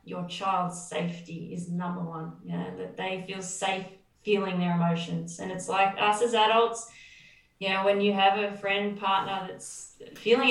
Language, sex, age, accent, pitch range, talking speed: English, female, 20-39, Australian, 180-200 Hz, 190 wpm